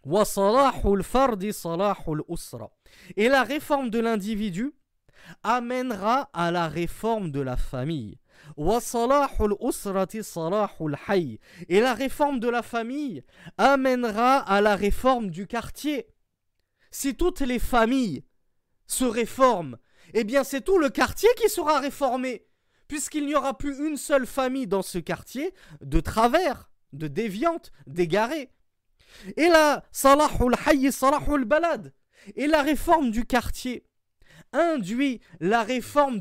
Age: 20-39